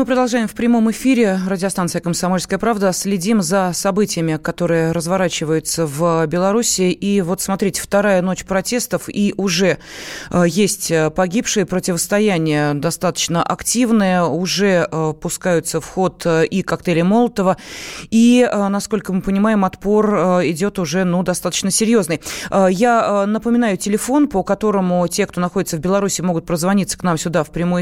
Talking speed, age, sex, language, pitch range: 130 wpm, 20-39, female, Russian, 175-215 Hz